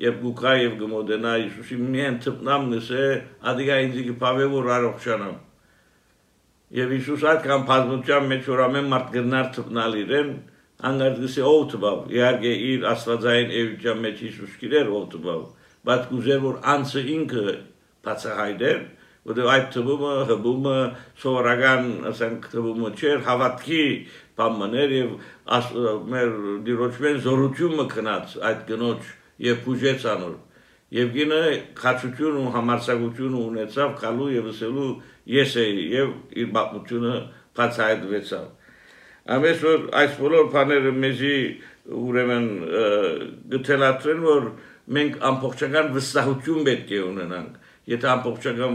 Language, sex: English, male